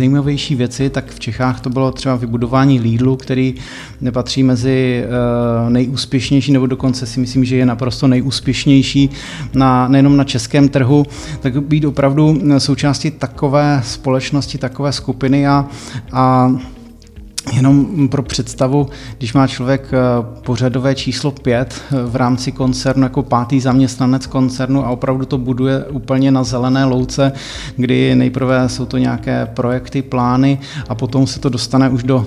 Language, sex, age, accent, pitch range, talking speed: Czech, male, 30-49, native, 125-135 Hz, 140 wpm